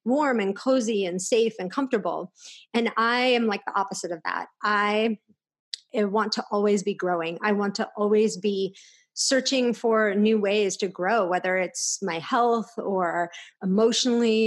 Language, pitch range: English, 195-225 Hz